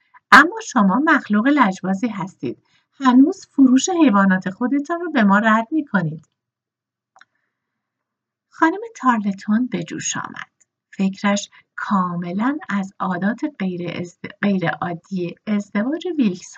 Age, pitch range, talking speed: 50-69, 195-290 Hz, 105 wpm